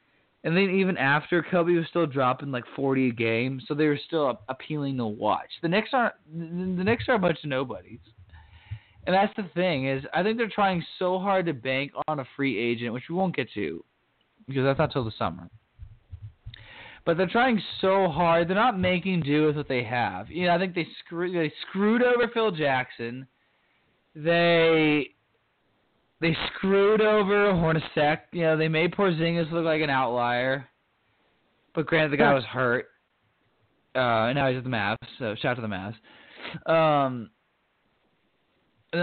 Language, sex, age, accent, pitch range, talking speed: English, male, 20-39, American, 120-180 Hz, 175 wpm